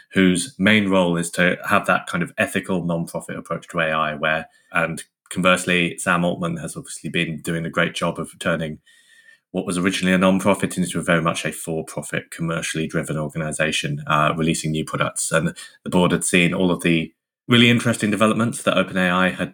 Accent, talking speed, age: British, 185 wpm, 20-39